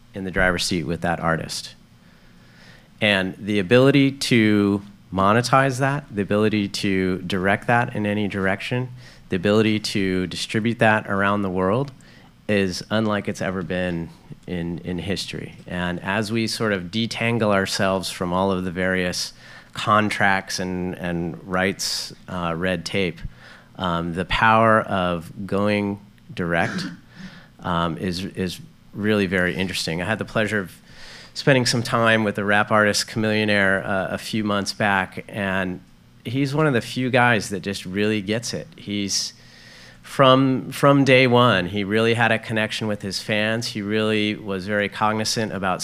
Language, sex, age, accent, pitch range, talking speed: English, male, 30-49, American, 95-110 Hz, 155 wpm